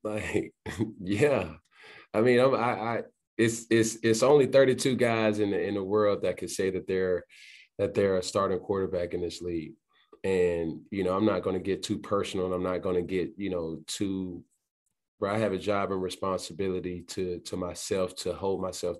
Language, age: English, 20-39